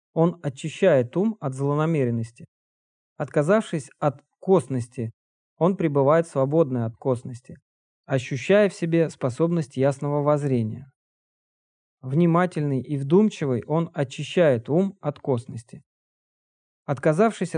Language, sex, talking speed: Russian, male, 95 wpm